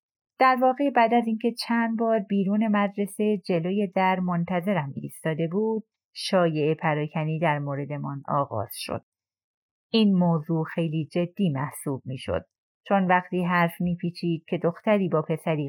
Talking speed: 135 wpm